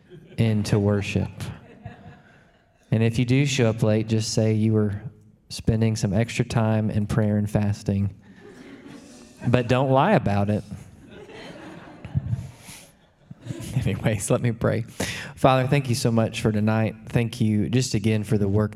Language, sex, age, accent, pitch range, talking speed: English, male, 20-39, American, 105-115 Hz, 140 wpm